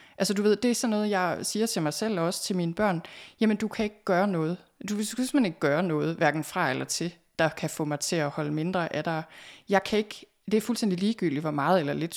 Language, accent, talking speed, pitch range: Danish, native, 260 wpm, 155-205 Hz